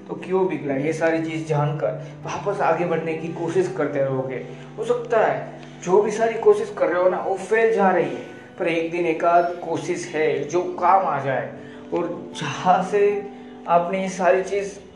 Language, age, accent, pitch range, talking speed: Hindi, 20-39, native, 150-190 Hz, 190 wpm